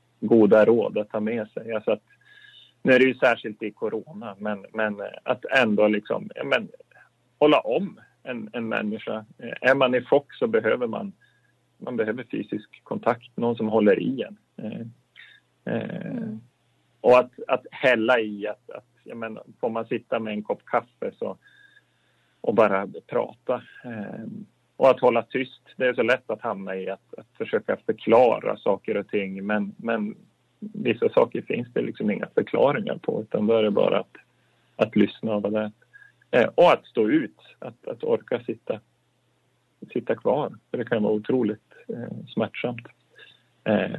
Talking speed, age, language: 160 wpm, 30-49, Swedish